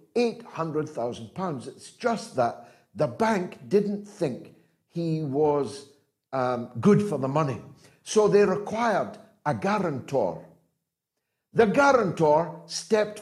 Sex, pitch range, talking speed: male, 190-255 Hz, 110 wpm